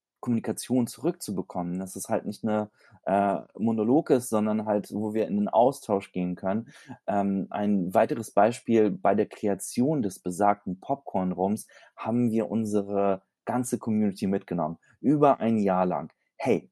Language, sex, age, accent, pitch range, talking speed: English, male, 30-49, German, 95-115 Hz, 145 wpm